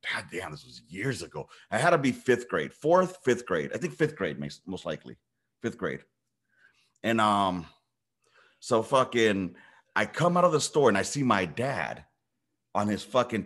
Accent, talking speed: American, 185 wpm